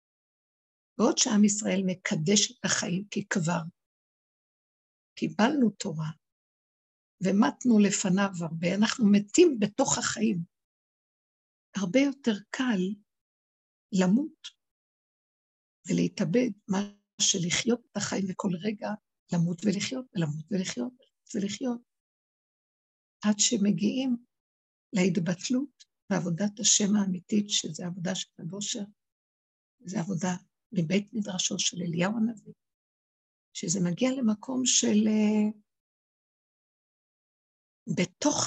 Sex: female